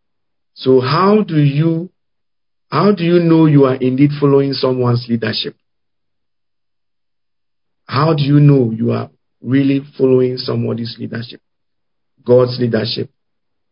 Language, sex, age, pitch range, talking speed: English, male, 50-69, 110-140 Hz, 115 wpm